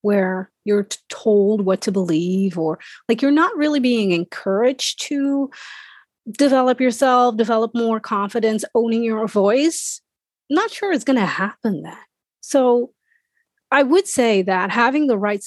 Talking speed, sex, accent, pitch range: 145 wpm, female, American, 190-250 Hz